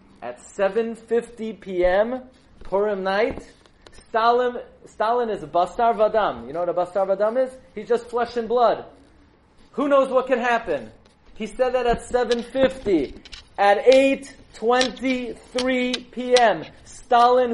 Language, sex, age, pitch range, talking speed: English, male, 30-49, 210-270 Hz, 125 wpm